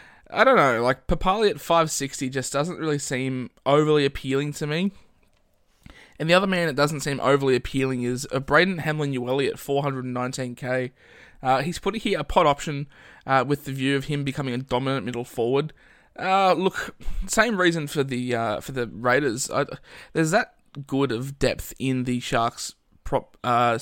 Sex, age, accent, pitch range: male, 20-39, Australian, 125-145 Hz